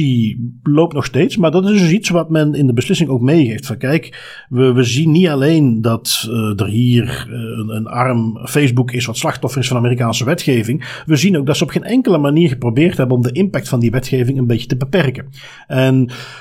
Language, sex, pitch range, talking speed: Dutch, male, 125-165 Hz, 220 wpm